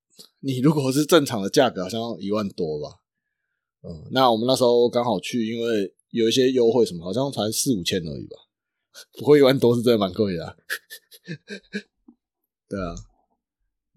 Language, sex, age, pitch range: Chinese, male, 20-39, 110-145 Hz